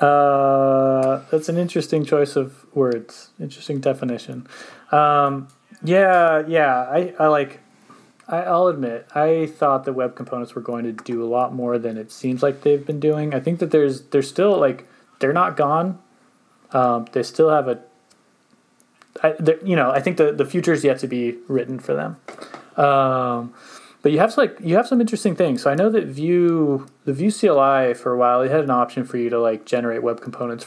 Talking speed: 195 wpm